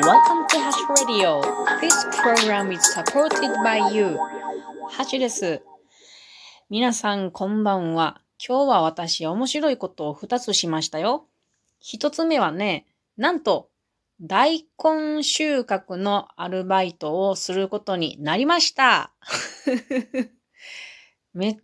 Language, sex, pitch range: Japanese, female, 165-250 Hz